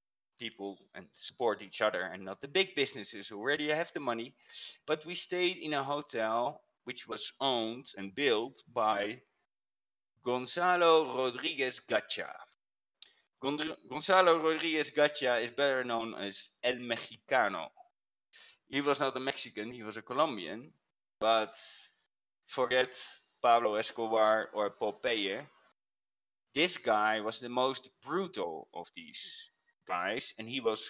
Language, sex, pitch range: English, male, 105-140 Hz